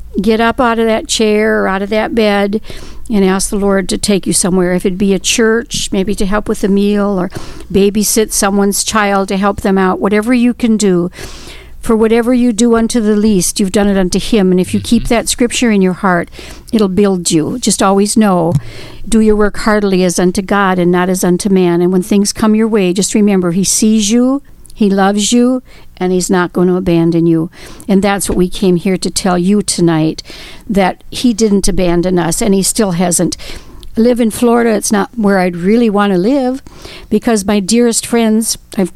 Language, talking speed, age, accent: English, 210 wpm, 60-79, American